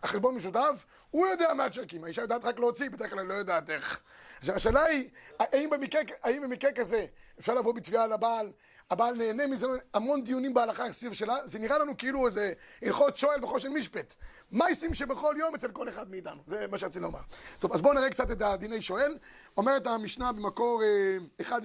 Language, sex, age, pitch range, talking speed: Hebrew, male, 30-49, 215-275 Hz, 185 wpm